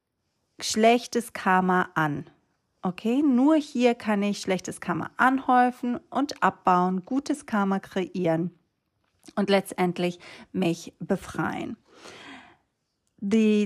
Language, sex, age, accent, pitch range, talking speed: German, female, 40-59, German, 185-240 Hz, 90 wpm